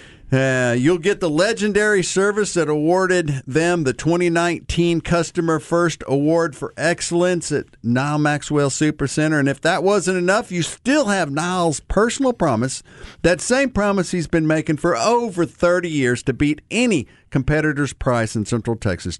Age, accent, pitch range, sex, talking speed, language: 50-69, American, 120-175 Hz, male, 155 wpm, English